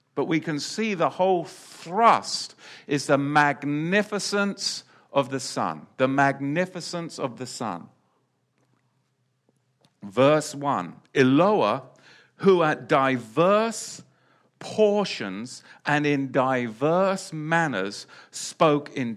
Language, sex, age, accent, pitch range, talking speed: English, male, 50-69, British, 130-180 Hz, 95 wpm